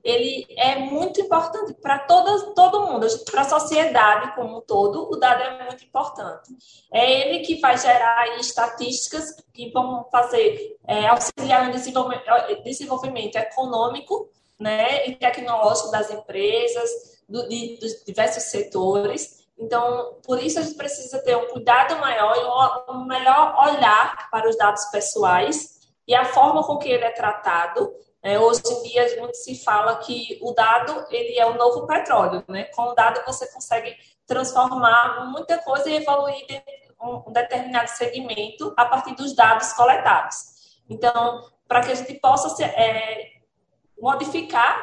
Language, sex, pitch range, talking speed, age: Portuguese, female, 230-280 Hz, 155 wpm, 20-39